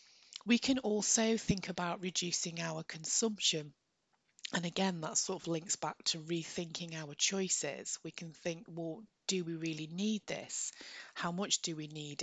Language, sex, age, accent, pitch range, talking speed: English, female, 30-49, British, 165-205 Hz, 160 wpm